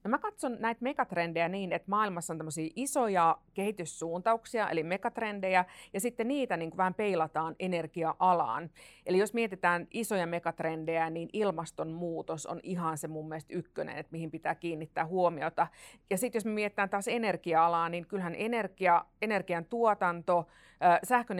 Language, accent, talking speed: Finnish, native, 145 wpm